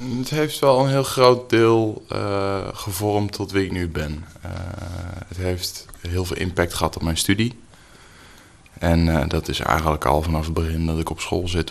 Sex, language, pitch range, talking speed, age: male, Dutch, 80-95 Hz, 195 wpm, 20-39